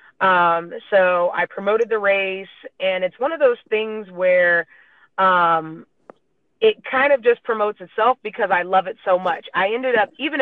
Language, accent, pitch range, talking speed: English, American, 180-210 Hz, 175 wpm